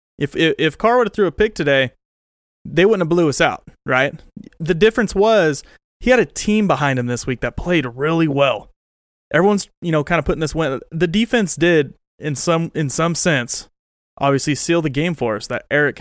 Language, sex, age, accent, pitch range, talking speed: English, male, 30-49, American, 130-175 Hz, 210 wpm